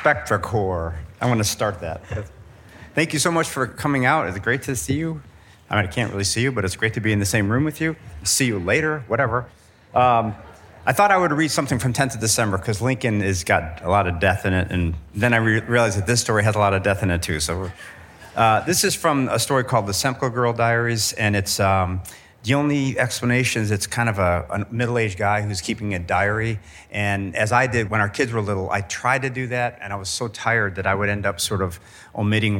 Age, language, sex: 40-59, English, male